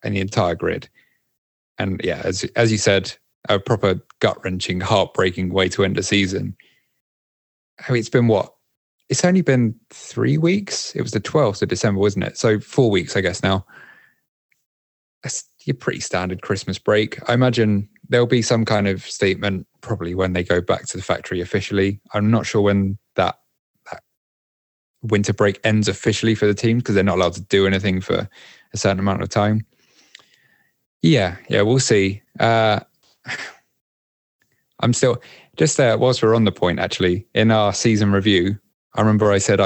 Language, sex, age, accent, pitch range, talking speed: English, male, 20-39, British, 95-115 Hz, 170 wpm